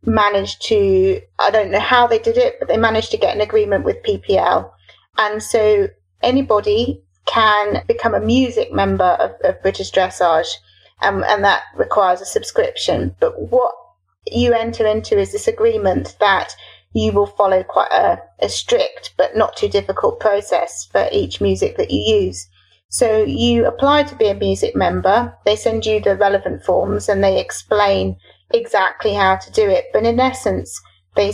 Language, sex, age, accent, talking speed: English, female, 30-49, British, 170 wpm